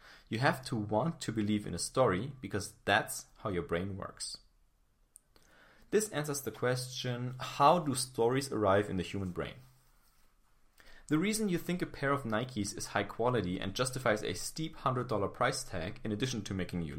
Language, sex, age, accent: English, male, 30-49, German